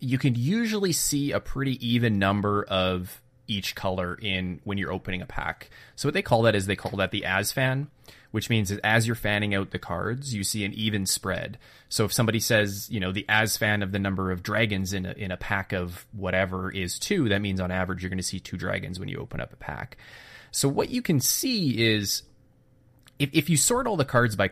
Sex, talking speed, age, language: male, 235 wpm, 20-39, English